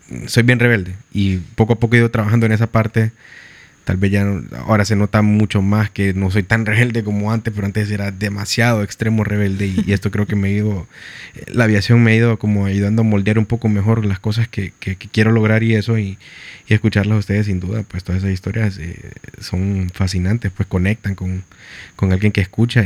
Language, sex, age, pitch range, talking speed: Spanish, male, 20-39, 95-110 Hz, 225 wpm